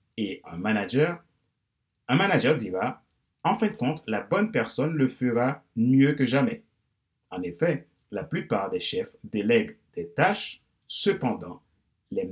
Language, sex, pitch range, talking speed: French, male, 105-145 Hz, 140 wpm